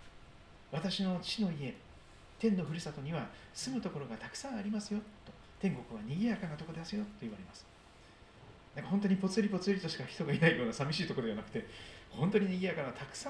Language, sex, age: Japanese, male, 40-59